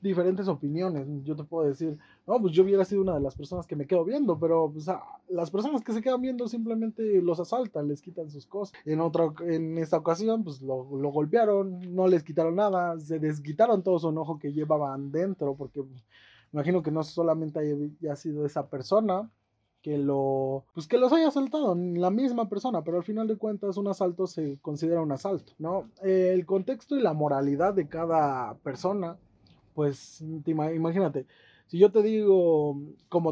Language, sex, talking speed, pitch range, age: Spanish, male, 185 wpm, 155-200 Hz, 20-39